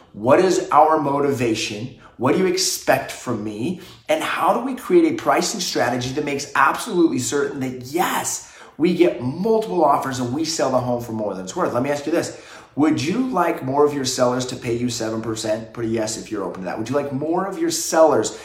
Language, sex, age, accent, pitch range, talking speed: English, male, 30-49, American, 120-160 Hz, 225 wpm